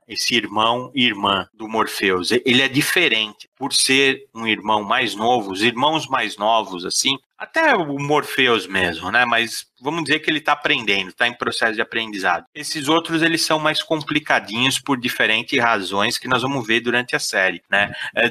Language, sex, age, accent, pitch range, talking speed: Portuguese, male, 30-49, Brazilian, 105-140 Hz, 180 wpm